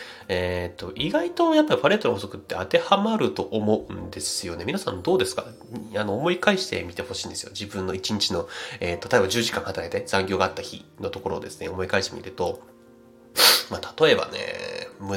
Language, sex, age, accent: Japanese, male, 30-49, native